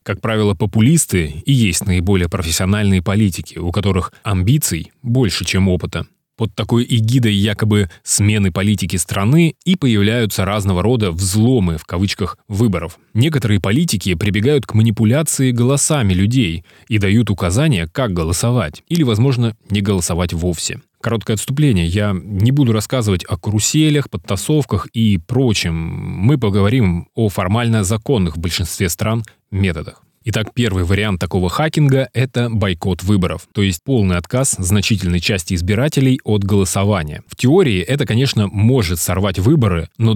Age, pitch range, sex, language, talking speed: 20-39, 95-120 Hz, male, Russian, 135 wpm